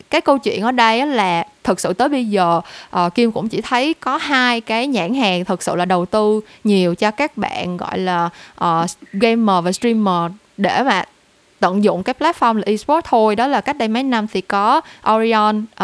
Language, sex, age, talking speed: Vietnamese, female, 10-29, 205 wpm